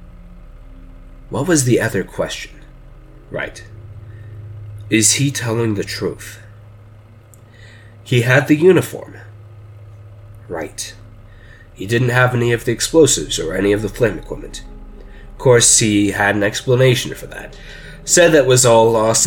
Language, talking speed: English, 130 wpm